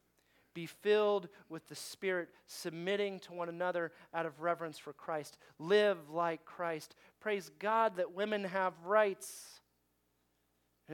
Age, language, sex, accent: 40-59, English, male, American